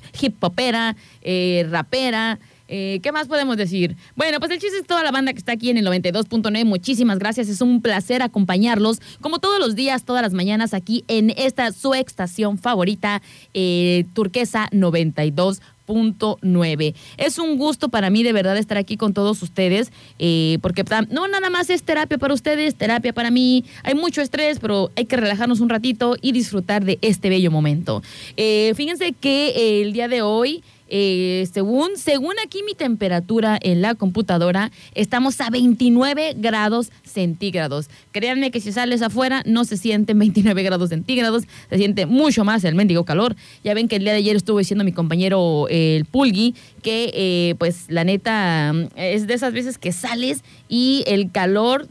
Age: 20-39